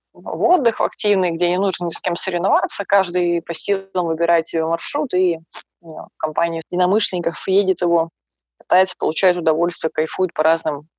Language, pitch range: Russian, 170-200 Hz